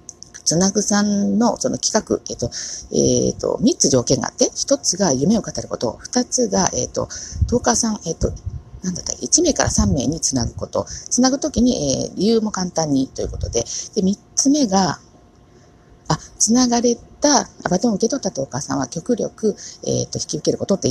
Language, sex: Japanese, female